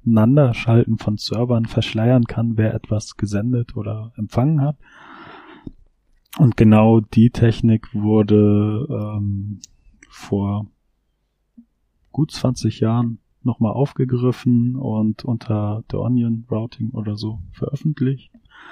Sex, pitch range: male, 105-115 Hz